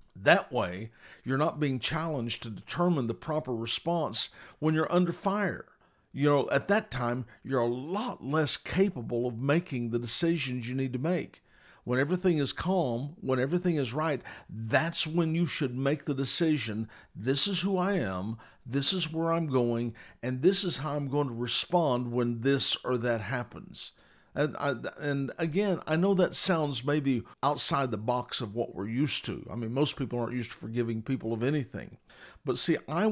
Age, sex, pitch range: 50-69, male, 120-165 Hz